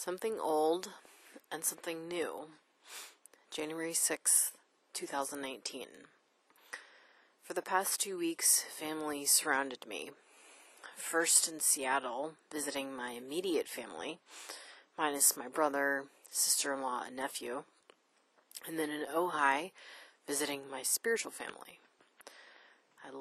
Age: 30-49